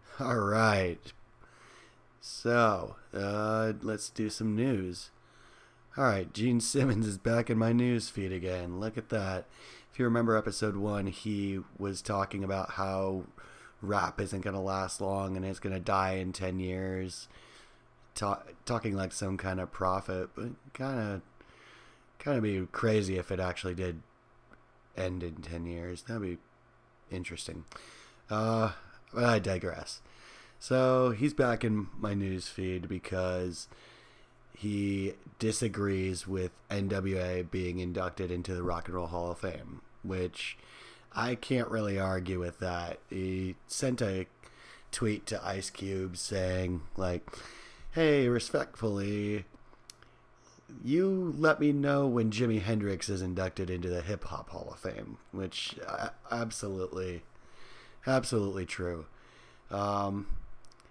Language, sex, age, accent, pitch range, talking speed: English, male, 30-49, American, 95-115 Hz, 130 wpm